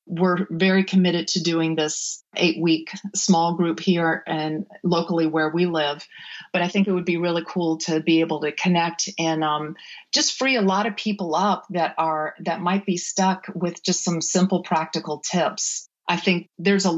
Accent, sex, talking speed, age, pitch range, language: American, female, 185 wpm, 40-59, 165-190 Hz, English